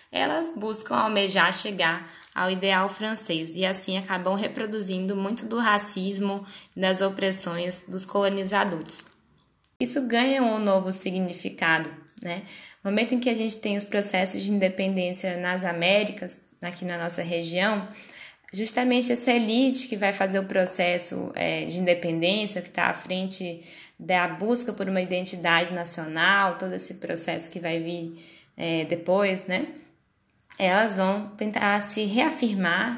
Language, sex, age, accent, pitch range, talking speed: Portuguese, female, 10-29, Brazilian, 180-220 Hz, 135 wpm